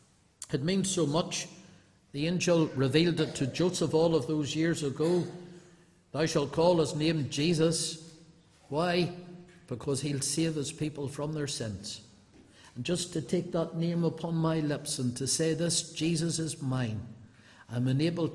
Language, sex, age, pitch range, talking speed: English, male, 60-79, 135-170 Hz, 155 wpm